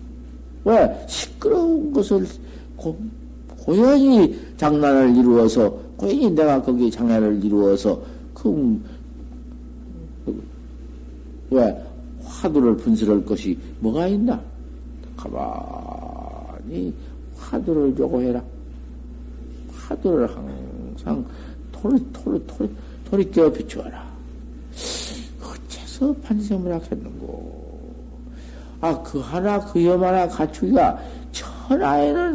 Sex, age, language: male, 50-69, Korean